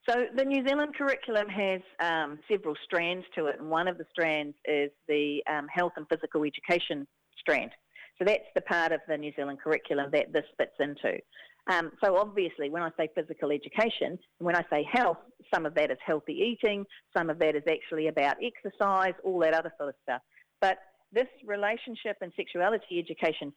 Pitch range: 165-235 Hz